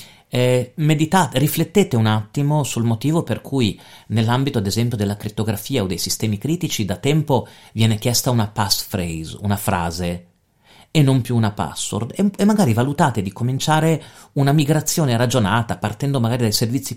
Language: Italian